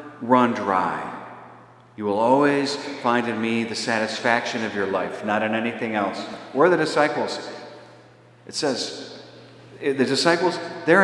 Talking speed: 140 wpm